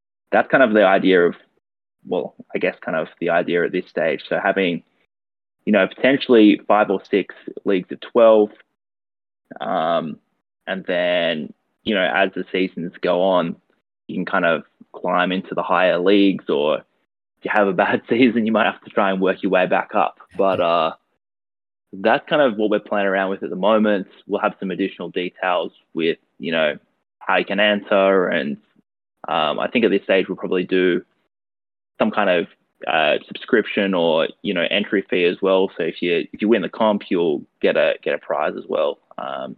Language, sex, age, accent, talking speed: English, male, 20-39, Australian, 195 wpm